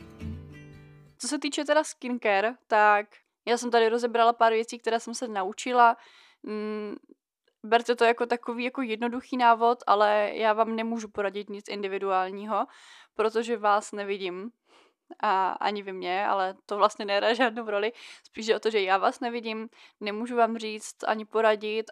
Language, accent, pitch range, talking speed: Czech, native, 205-235 Hz, 155 wpm